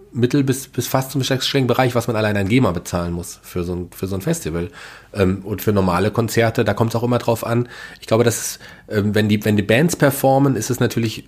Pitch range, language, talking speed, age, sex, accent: 95-115 Hz, German, 245 wpm, 30-49, male, German